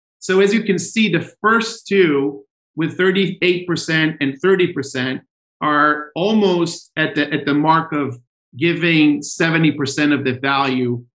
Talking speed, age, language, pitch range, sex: 135 wpm, 40-59, English, 140-180 Hz, male